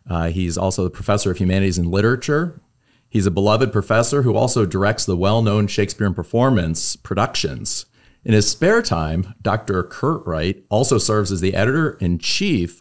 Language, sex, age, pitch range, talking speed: English, male, 40-59, 90-115 Hz, 155 wpm